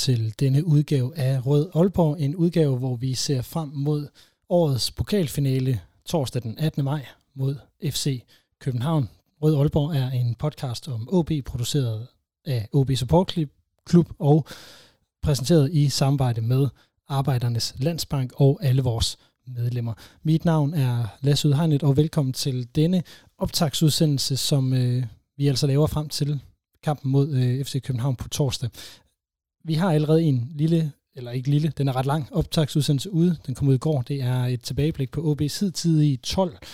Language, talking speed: Danish, 155 wpm